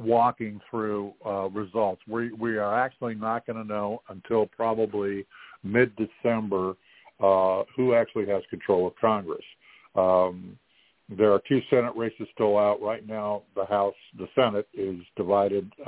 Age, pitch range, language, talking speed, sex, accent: 50-69, 100-115 Hz, English, 145 wpm, male, American